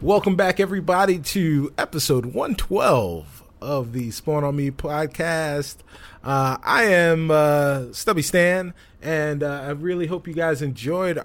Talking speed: 140 wpm